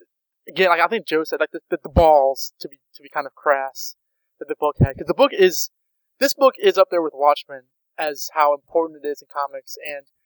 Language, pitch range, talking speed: English, 145-180 Hz, 240 wpm